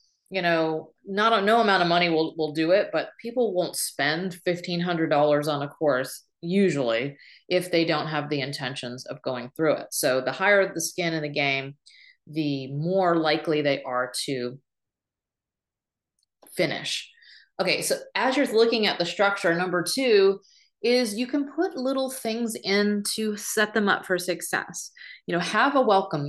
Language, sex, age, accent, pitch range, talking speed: English, female, 30-49, American, 160-210 Hz, 170 wpm